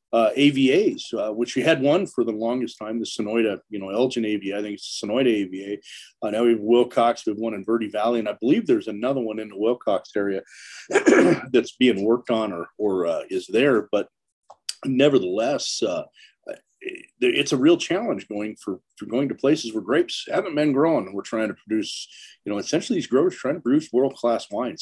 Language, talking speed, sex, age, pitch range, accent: English, 215 wpm, male, 40-59, 105-135 Hz, American